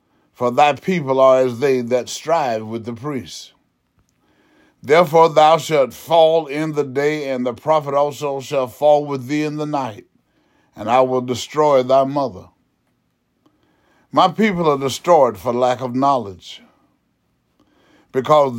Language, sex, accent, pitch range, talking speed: English, male, American, 120-150 Hz, 140 wpm